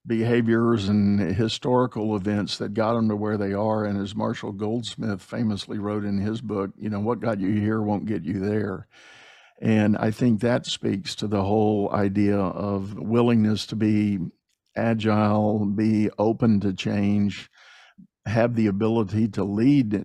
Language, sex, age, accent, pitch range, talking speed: English, male, 50-69, American, 105-115 Hz, 160 wpm